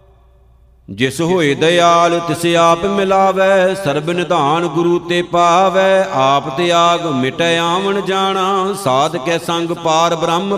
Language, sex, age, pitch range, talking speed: Punjabi, male, 50-69, 170-190 Hz, 115 wpm